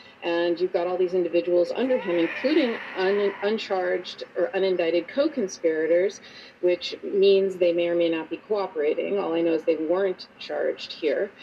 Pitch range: 170-255 Hz